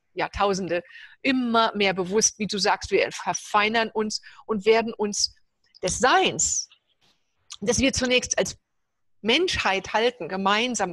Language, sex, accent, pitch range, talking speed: German, female, German, 190-240 Hz, 120 wpm